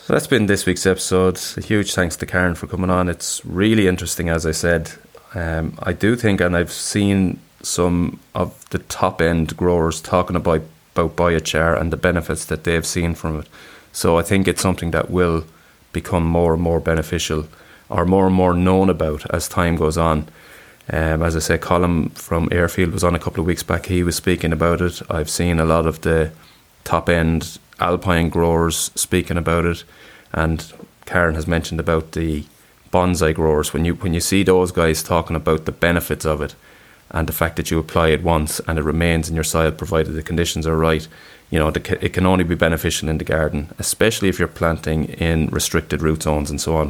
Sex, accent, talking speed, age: male, Irish, 200 wpm, 20-39